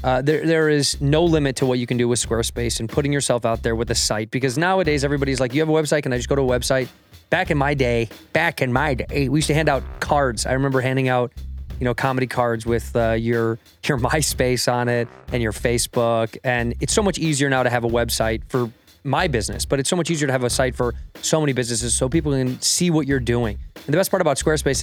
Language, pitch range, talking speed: English, 120-145 Hz, 260 wpm